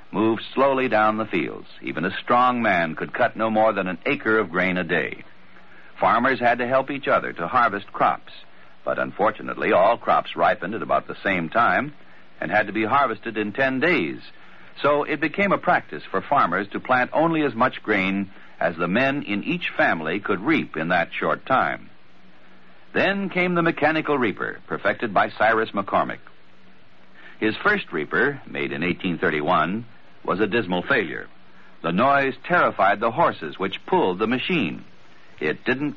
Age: 60-79